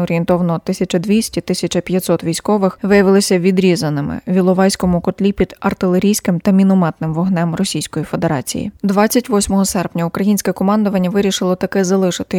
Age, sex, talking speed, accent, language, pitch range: 20-39, female, 105 wpm, native, Ukrainian, 175-200 Hz